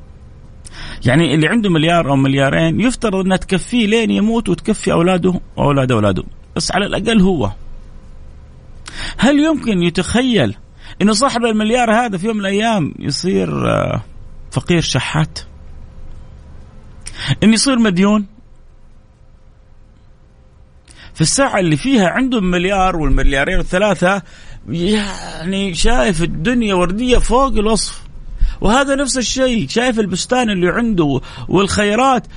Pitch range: 140-230 Hz